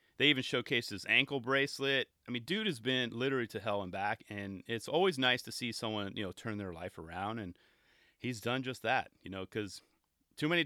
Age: 30-49